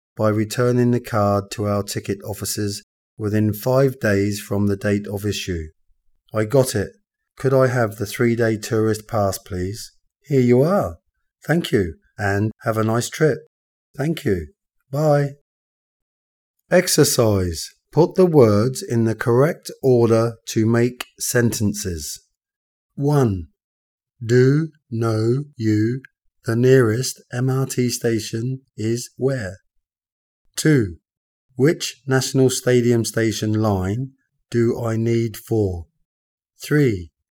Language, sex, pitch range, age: Thai, male, 105-130 Hz, 30-49